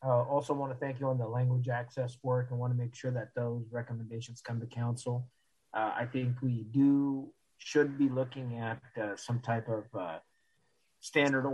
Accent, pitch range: American, 115-135 Hz